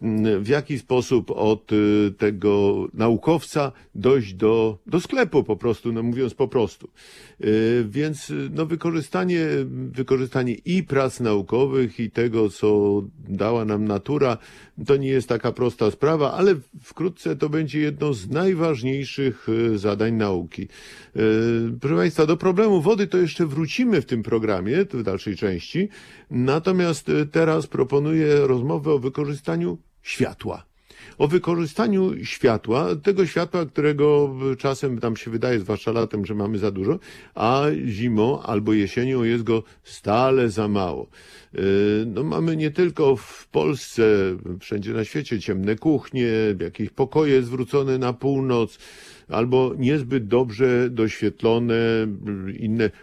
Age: 50-69